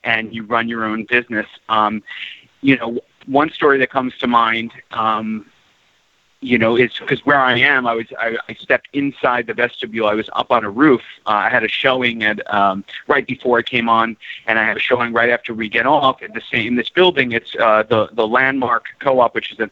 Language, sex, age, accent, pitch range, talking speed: English, male, 40-59, American, 110-130 Hz, 225 wpm